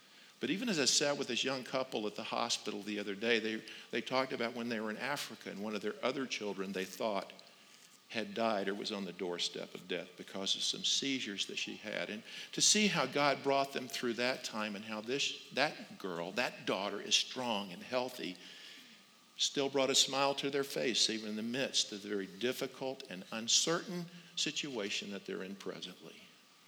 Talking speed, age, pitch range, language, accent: 205 wpm, 50-69, 105-135 Hz, English, American